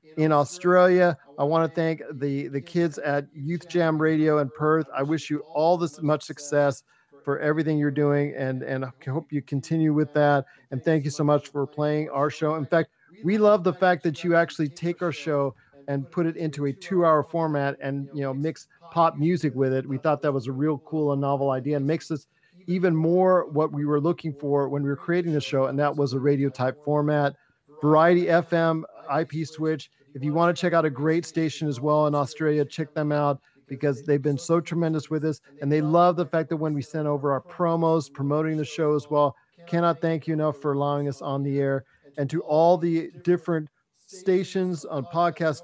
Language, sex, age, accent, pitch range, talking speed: English, male, 40-59, American, 145-165 Hz, 215 wpm